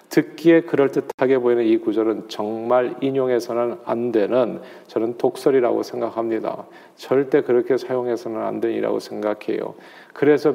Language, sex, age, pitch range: Korean, male, 40-59, 120-150 Hz